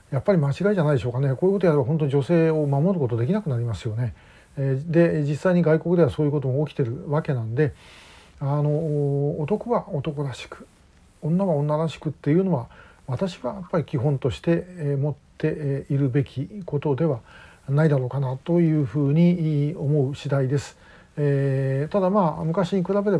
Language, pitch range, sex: Japanese, 140-175 Hz, male